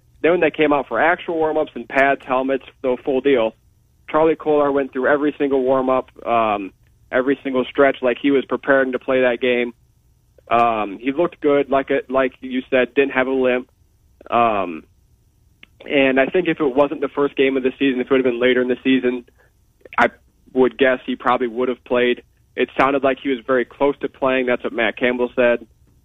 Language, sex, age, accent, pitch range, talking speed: English, male, 20-39, American, 115-135 Hz, 205 wpm